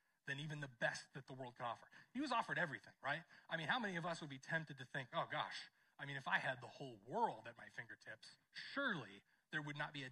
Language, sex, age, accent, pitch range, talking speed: English, male, 30-49, American, 135-160 Hz, 260 wpm